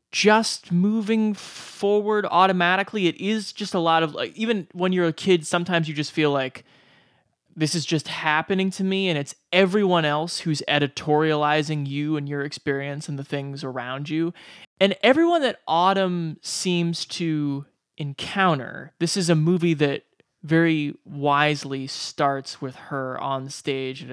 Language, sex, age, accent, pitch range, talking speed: English, male, 20-39, American, 140-175 Hz, 155 wpm